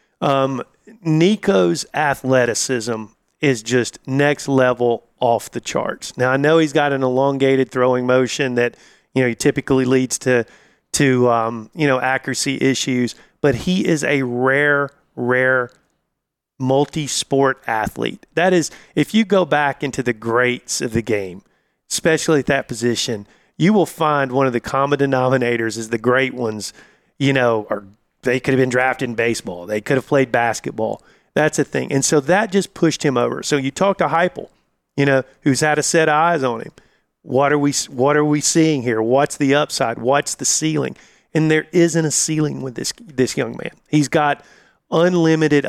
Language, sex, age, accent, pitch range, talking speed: English, male, 40-59, American, 125-150 Hz, 180 wpm